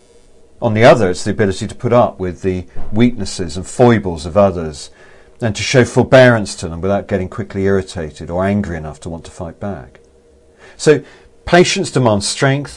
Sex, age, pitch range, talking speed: male, 50-69, 90-120 Hz, 180 wpm